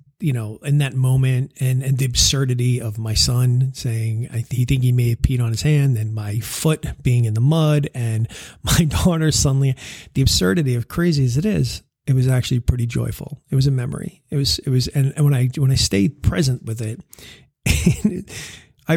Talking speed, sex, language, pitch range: 215 wpm, male, English, 120-140 Hz